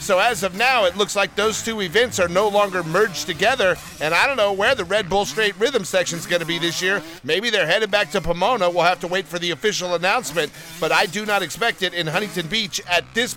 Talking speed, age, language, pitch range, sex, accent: 255 wpm, 40-59, English, 155-200 Hz, male, American